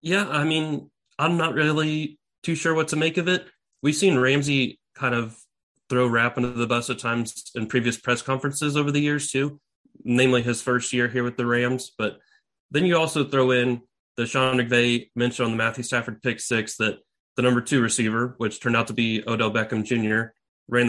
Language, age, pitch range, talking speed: English, 30-49, 115-135 Hz, 205 wpm